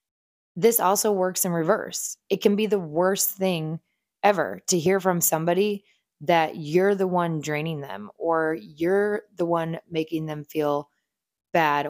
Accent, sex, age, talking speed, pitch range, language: American, female, 20-39, 150 wpm, 160-200 Hz, English